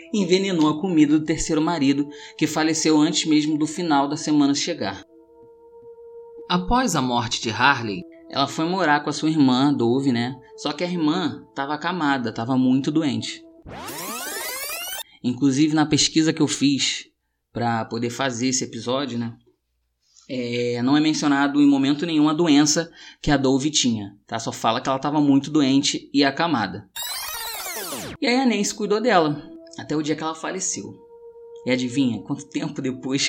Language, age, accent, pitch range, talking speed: Portuguese, 20-39, Brazilian, 130-165 Hz, 165 wpm